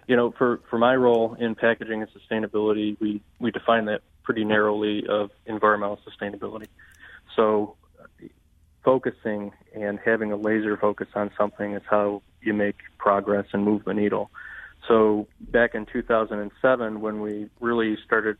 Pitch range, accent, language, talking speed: 105-110 Hz, American, English, 145 wpm